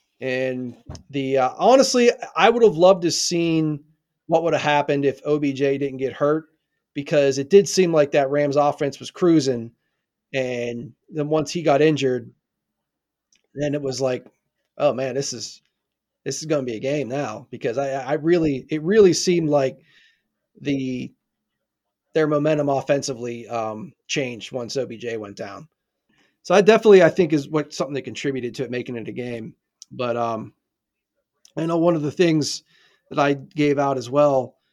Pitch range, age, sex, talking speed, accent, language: 125-155 Hz, 30-49, male, 170 wpm, American, English